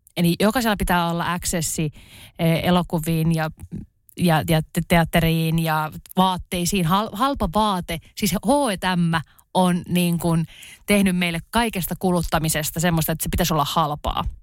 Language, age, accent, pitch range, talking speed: Finnish, 20-39, native, 160-200 Hz, 120 wpm